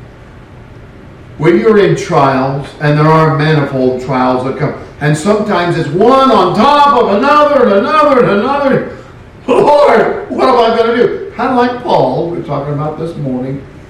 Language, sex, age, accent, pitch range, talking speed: English, male, 50-69, American, 130-205 Hz, 175 wpm